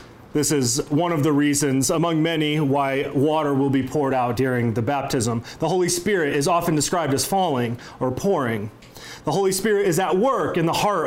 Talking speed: 195 wpm